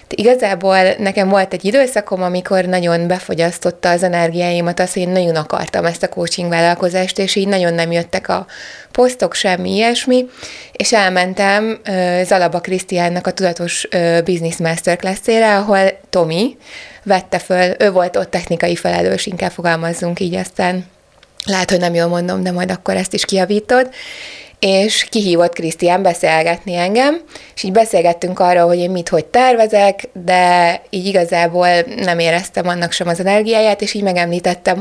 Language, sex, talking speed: Hungarian, female, 150 wpm